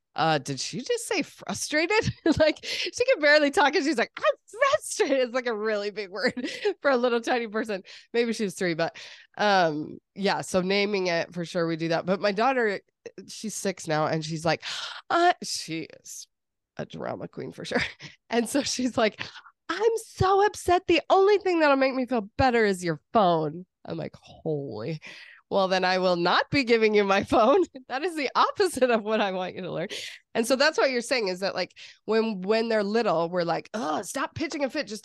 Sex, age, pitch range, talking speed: female, 20-39, 175-265 Hz, 205 wpm